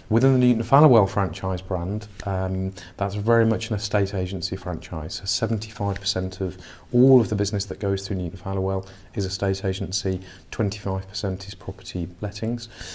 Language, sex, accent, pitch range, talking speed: English, male, British, 95-105 Hz, 145 wpm